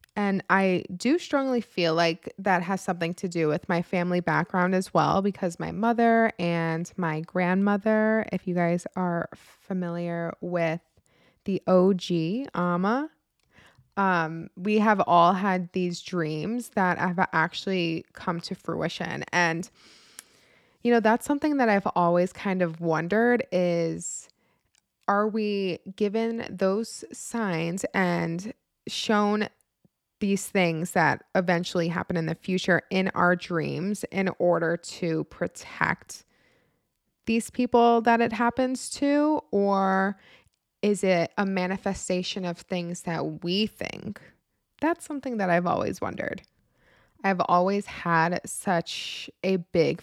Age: 20-39